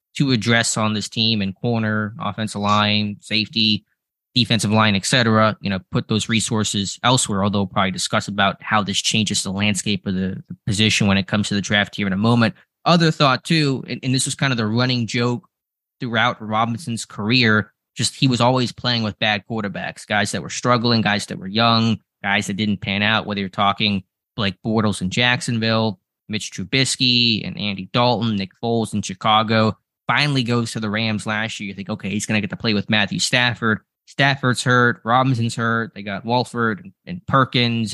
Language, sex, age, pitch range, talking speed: English, male, 20-39, 105-120 Hz, 195 wpm